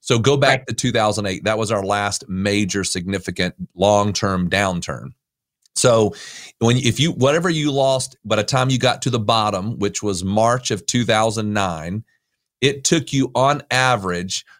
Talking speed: 155 wpm